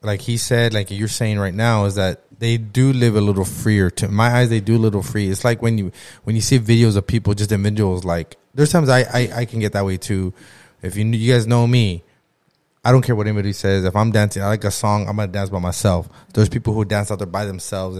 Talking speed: 265 wpm